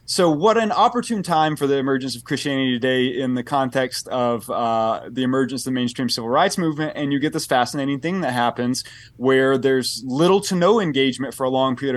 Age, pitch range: 20-39, 130-155 Hz